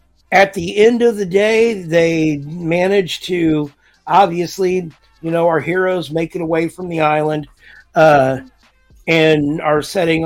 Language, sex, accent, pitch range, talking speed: English, male, American, 155-180 Hz, 140 wpm